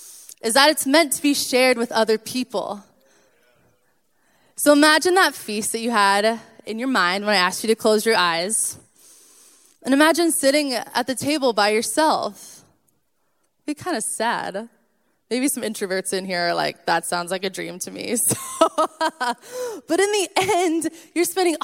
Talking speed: 165 wpm